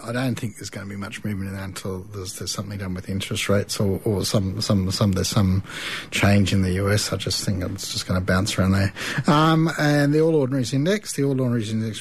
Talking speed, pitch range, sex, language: 225 wpm, 100-130 Hz, male, English